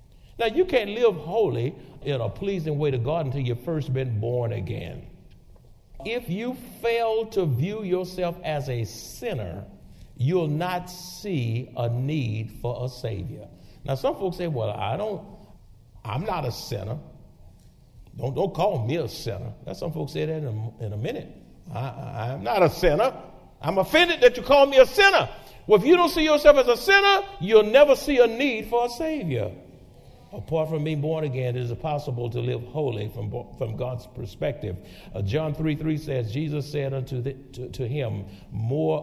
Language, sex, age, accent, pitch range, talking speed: English, male, 60-79, American, 115-160 Hz, 185 wpm